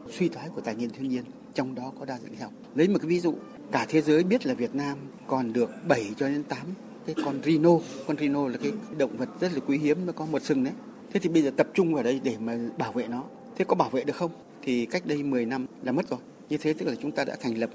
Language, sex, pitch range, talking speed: Vietnamese, male, 135-180 Hz, 290 wpm